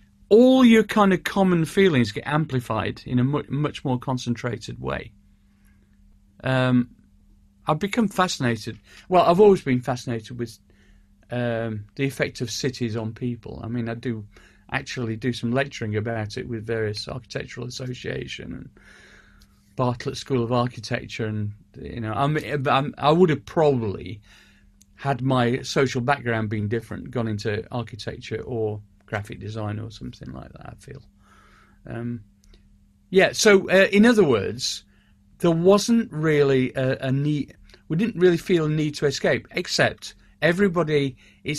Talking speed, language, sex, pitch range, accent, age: 145 wpm, English, male, 105-140 Hz, British, 40-59